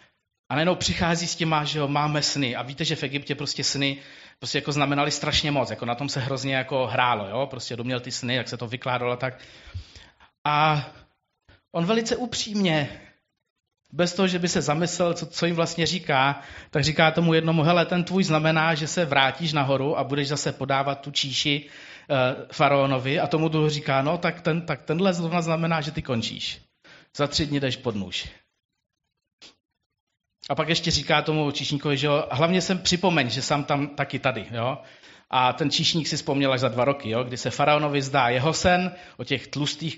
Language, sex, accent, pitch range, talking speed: Czech, male, native, 135-165 Hz, 190 wpm